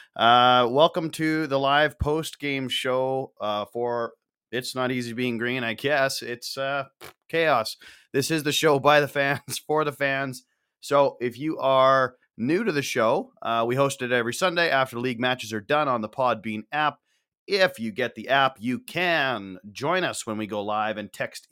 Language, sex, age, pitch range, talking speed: English, male, 30-49, 115-145 Hz, 190 wpm